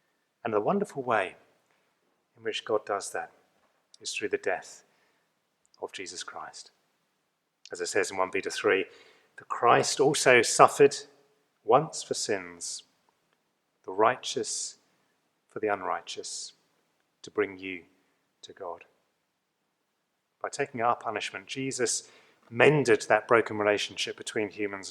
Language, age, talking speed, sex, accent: English, 30-49, 125 wpm, male, British